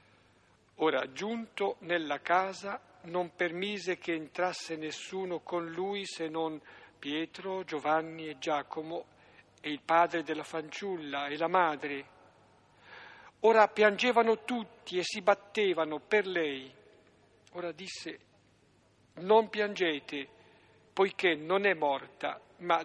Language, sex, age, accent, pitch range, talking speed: Italian, male, 60-79, native, 150-190 Hz, 110 wpm